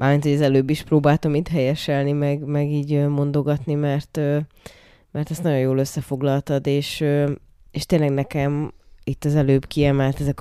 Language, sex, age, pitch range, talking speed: Hungarian, female, 20-39, 130-145 Hz, 150 wpm